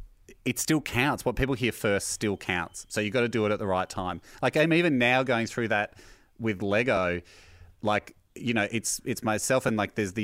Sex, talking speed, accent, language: male, 225 wpm, Australian, English